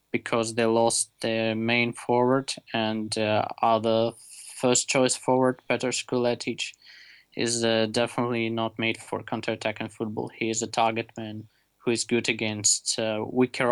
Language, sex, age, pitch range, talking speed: English, male, 20-39, 115-125 Hz, 155 wpm